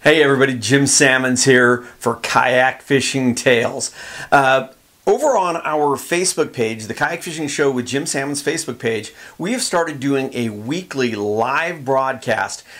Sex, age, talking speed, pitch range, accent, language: male, 40-59, 145 wpm, 125-160 Hz, American, English